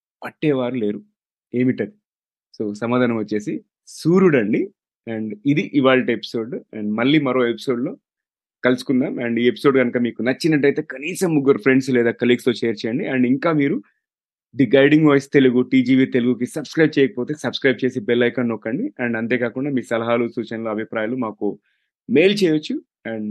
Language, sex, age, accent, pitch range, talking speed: Telugu, male, 30-49, native, 120-145 Hz, 145 wpm